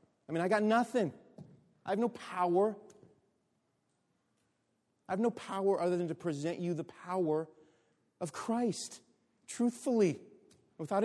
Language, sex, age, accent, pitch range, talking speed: English, male, 30-49, American, 160-240 Hz, 130 wpm